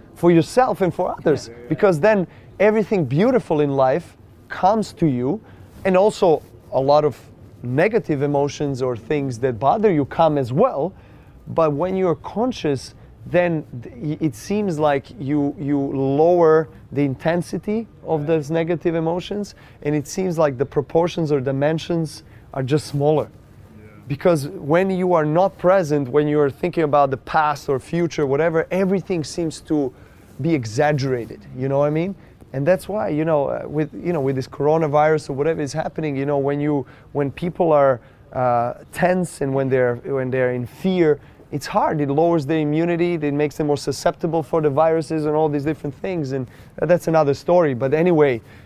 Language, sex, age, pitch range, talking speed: English, male, 30-49, 135-165 Hz, 170 wpm